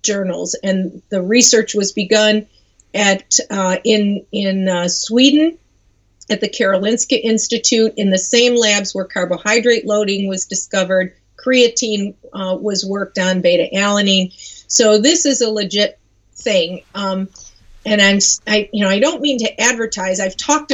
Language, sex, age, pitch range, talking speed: English, female, 40-59, 190-245 Hz, 150 wpm